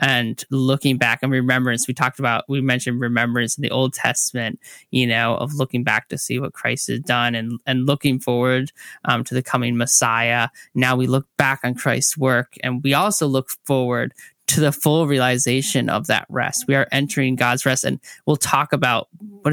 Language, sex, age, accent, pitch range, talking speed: English, male, 10-29, American, 120-140 Hz, 195 wpm